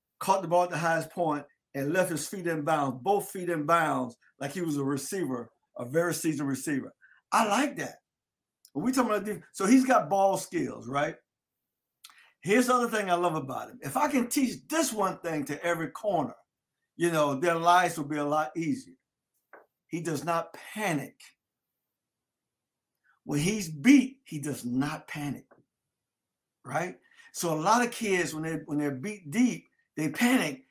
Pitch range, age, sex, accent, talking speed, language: 160-230 Hz, 50-69, male, American, 180 wpm, English